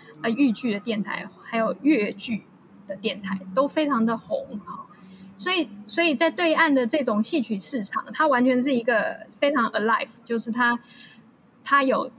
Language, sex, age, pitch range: Chinese, female, 20-39, 220-275 Hz